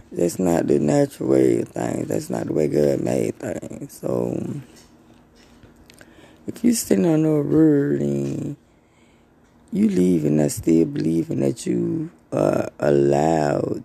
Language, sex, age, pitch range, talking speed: English, female, 20-39, 80-130 Hz, 135 wpm